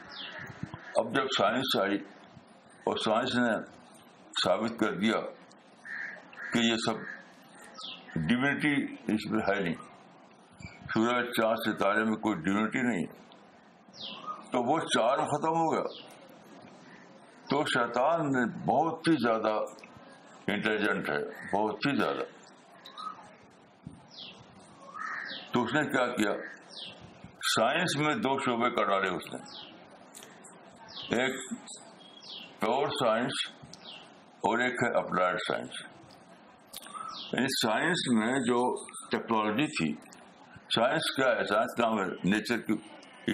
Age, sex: 60-79, male